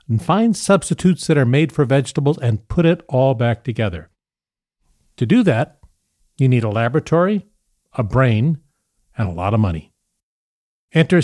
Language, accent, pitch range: English, American, 115-165 Hz